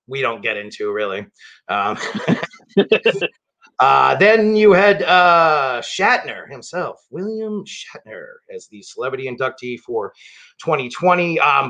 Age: 30-49